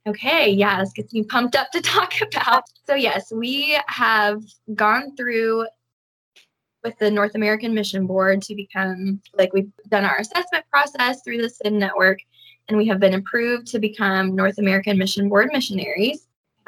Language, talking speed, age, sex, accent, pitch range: English, 170 wpm, 20-39, female, American, 190-225 Hz